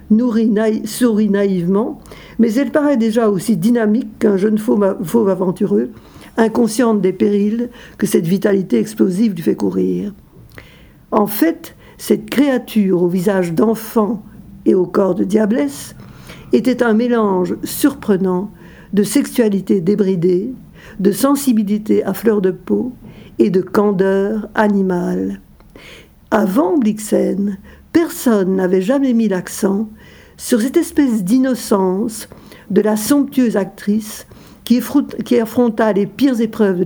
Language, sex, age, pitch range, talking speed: French, female, 60-79, 195-235 Hz, 125 wpm